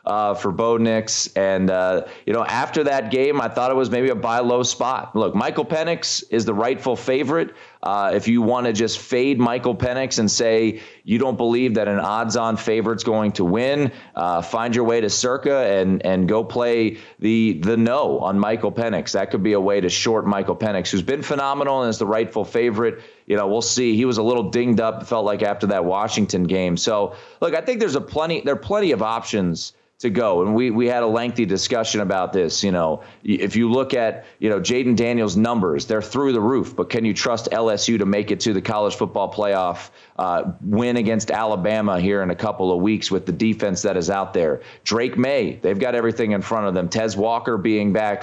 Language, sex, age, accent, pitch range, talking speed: English, male, 30-49, American, 105-125 Hz, 225 wpm